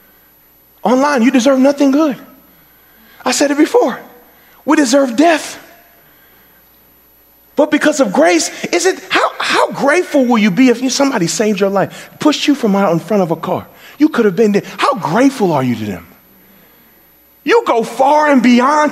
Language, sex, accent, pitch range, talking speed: English, male, American, 195-295 Hz, 170 wpm